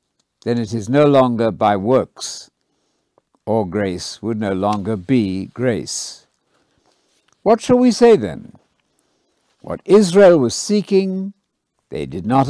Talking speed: 125 wpm